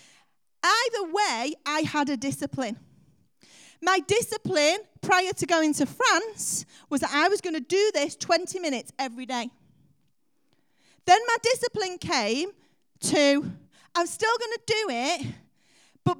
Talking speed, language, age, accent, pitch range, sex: 135 wpm, English, 30-49, British, 240-375 Hz, female